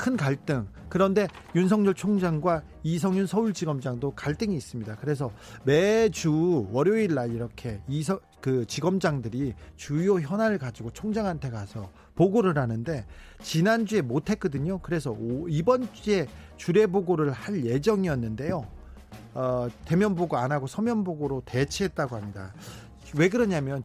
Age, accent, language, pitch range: 40-59, native, Korean, 130-200 Hz